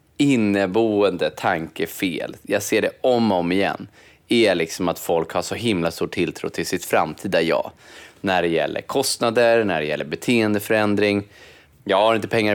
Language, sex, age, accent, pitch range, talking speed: Swedish, male, 20-39, native, 85-115 Hz, 165 wpm